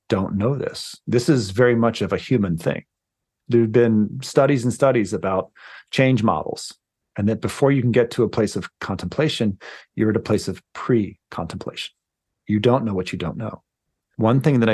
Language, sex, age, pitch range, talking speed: English, male, 40-59, 95-125 Hz, 190 wpm